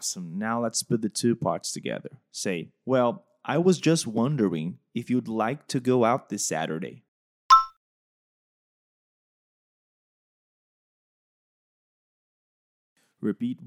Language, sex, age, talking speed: Portuguese, male, 20-39, 95 wpm